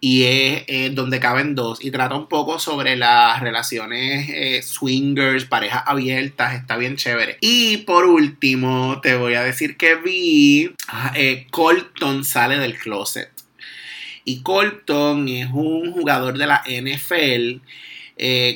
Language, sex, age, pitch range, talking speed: Spanish, male, 30-49, 125-150 Hz, 140 wpm